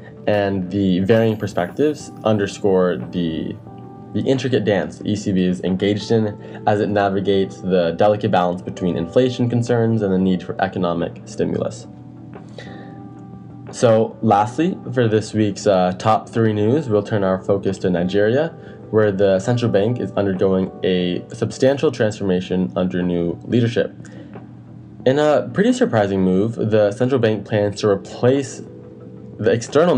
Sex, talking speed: male, 140 wpm